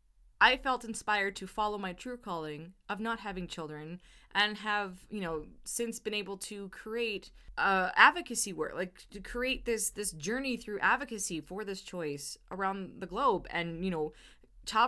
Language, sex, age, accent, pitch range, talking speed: English, female, 20-39, American, 175-230 Hz, 165 wpm